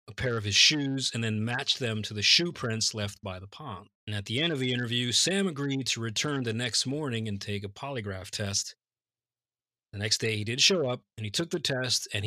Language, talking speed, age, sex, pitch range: English, 240 wpm, 30-49, male, 110-135 Hz